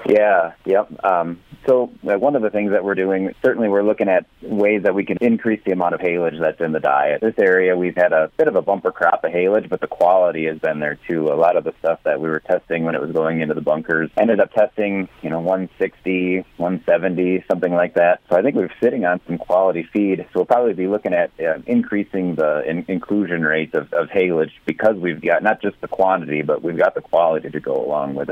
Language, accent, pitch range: English, American, 85-100 Hz